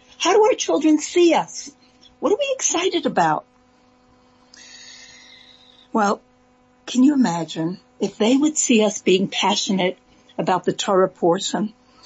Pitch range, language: 220-280 Hz, English